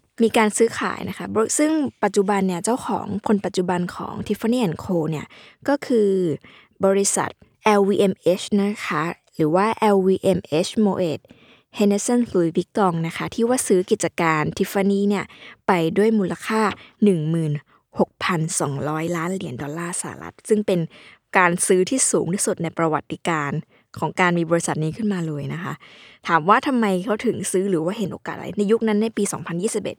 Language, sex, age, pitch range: Thai, female, 20-39, 180-225 Hz